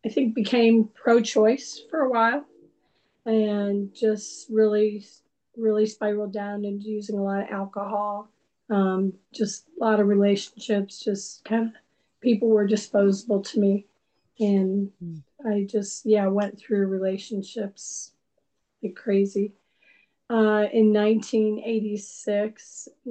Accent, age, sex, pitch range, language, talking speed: American, 40-59, female, 200-220 Hz, English, 115 wpm